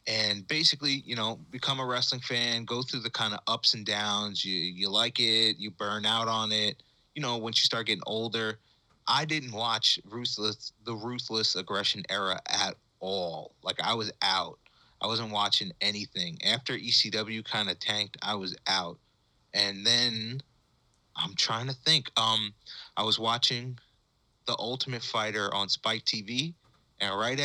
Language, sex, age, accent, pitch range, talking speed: English, male, 30-49, American, 100-120 Hz, 165 wpm